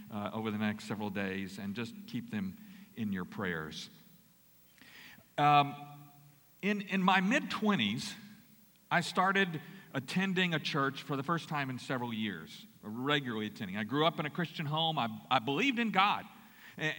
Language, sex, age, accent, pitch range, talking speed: English, male, 50-69, American, 145-205 Hz, 165 wpm